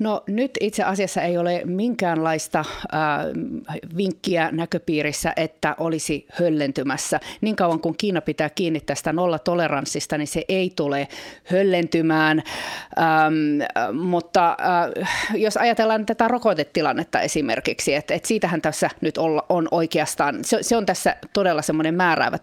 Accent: native